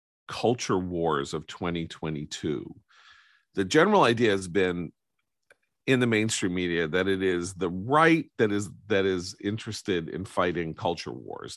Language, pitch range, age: English, 85-115 Hz, 40-59